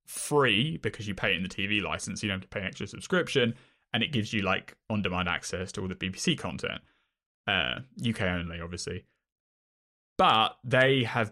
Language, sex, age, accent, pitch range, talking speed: English, male, 10-29, British, 100-135 Hz, 185 wpm